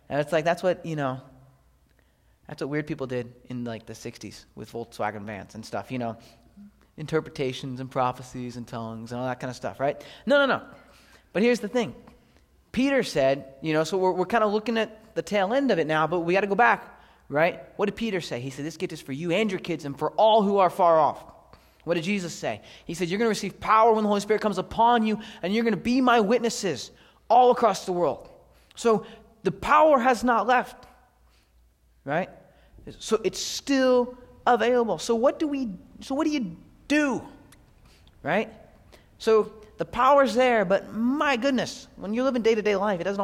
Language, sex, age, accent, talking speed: English, male, 20-39, American, 205 wpm